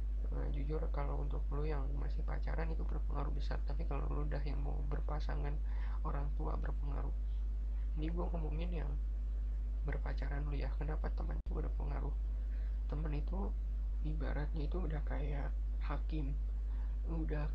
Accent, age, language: native, 20-39, Indonesian